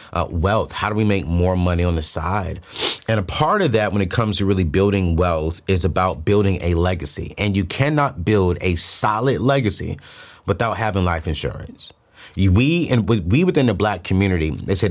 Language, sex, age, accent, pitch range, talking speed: English, male, 30-49, American, 90-115 Hz, 195 wpm